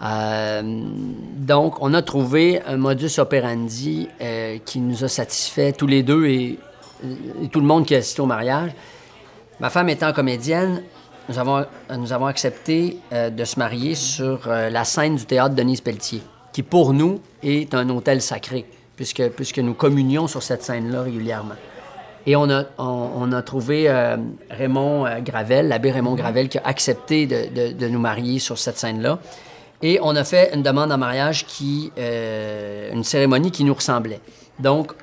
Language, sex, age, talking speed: French, male, 40-59, 170 wpm